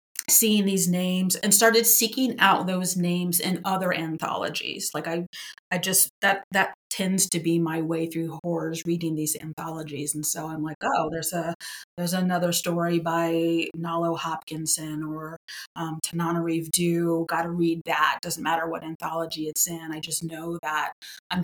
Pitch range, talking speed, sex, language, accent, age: 160-175 Hz, 170 wpm, female, English, American, 30-49